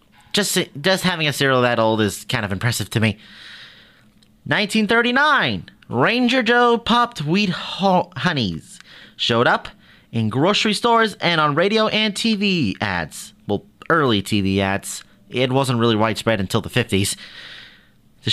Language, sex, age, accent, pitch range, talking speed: English, male, 30-49, American, 110-180 Hz, 140 wpm